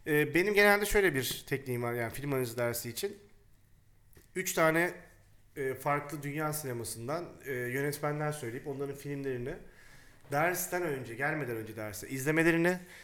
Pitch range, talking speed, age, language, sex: 120-165 Hz, 115 wpm, 40-59, Turkish, male